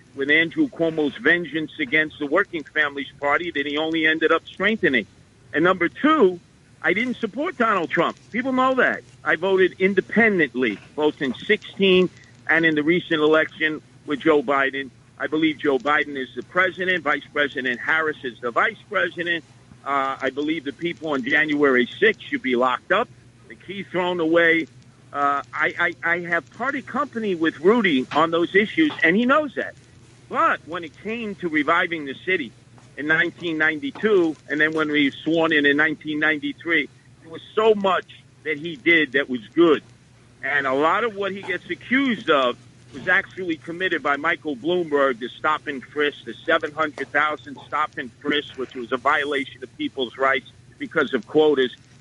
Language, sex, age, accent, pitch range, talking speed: English, male, 50-69, American, 135-180 Hz, 170 wpm